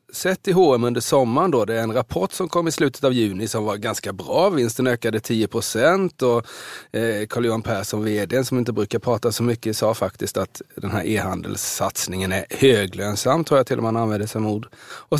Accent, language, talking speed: native, Swedish, 210 wpm